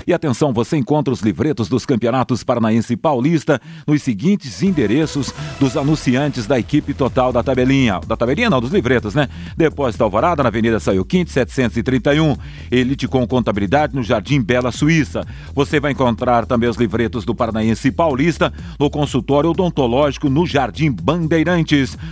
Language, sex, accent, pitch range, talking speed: Portuguese, male, Brazilian, 130-170 Hz, 155 wpm